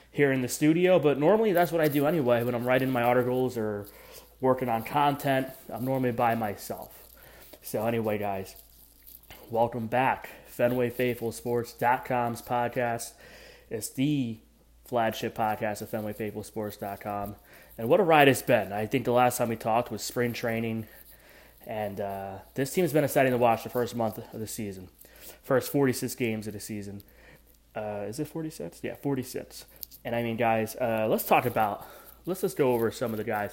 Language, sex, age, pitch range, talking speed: English, male, 20-39, 110-135 Hz, 175 wpm